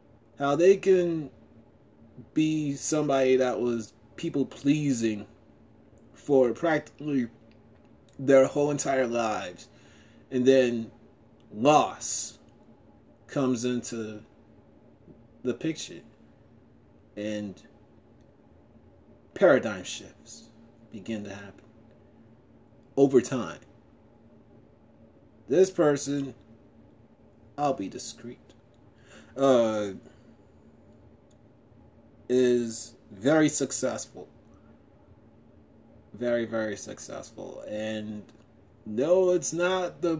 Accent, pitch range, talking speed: American, 110-145 Hz, 70 wpm